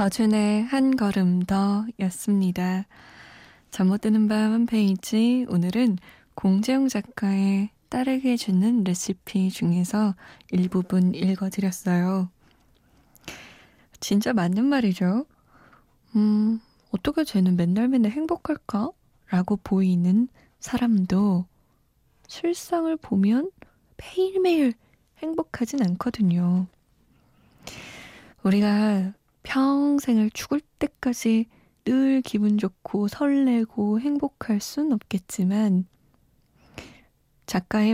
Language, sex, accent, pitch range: Korean, female, native, 185-240 Hz